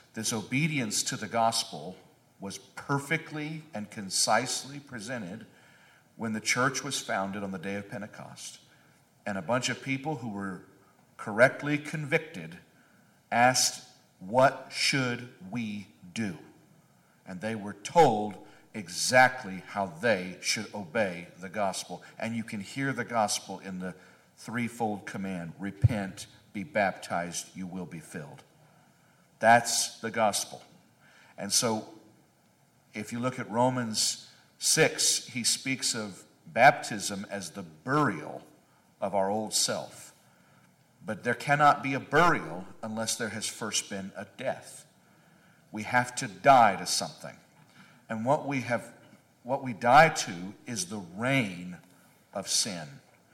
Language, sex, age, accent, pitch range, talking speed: English, male, 50-69, American, 100-130 Hz, 130 wpm